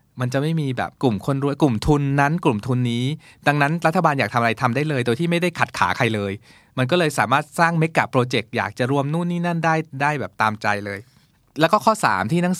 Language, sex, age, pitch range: Thai, male, 20-39, 115-155 Hz